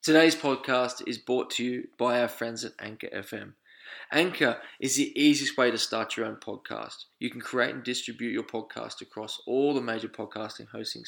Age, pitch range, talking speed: 20-39, 115-130 Hz, 190 wpm